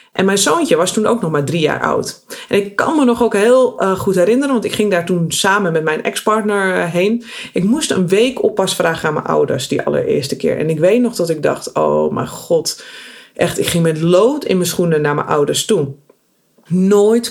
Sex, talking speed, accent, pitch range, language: female, 230 wpm, Dutch, 180-250 Hz, Dutch